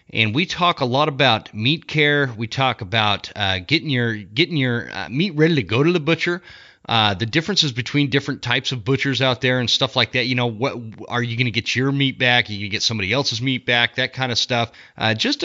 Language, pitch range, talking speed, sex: English, 110-130 Hz, 245 wpm, male